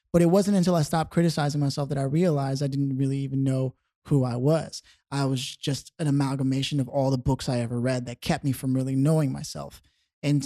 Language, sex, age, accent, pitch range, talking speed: English, male, 20-39, American, 130-160 Hz, 225 wpm